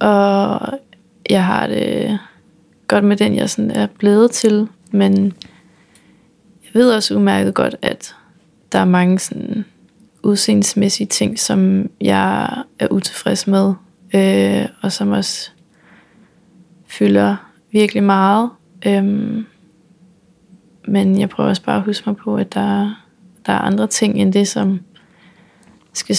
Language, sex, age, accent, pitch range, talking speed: Danish, female, 20-39, native, 180-210 Hz, 135 wpm